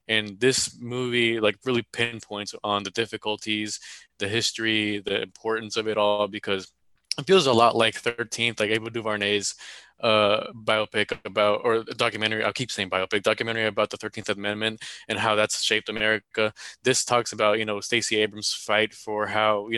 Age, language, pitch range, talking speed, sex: 20-39, English, 105-120 Hz, 165 wpm, male